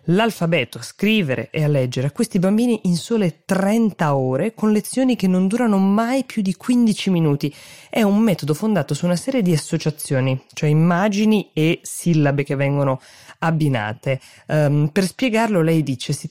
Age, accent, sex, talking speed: 20-39, native, female, 165 wpm